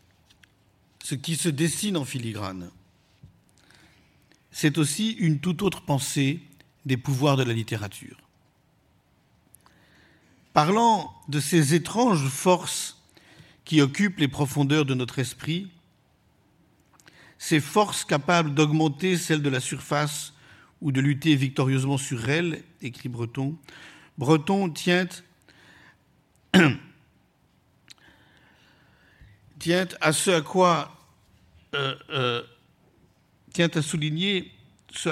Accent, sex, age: French, male, 50-69